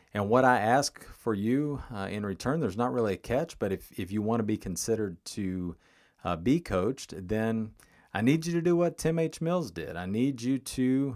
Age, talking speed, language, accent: 40-59, 220 wpm, English, American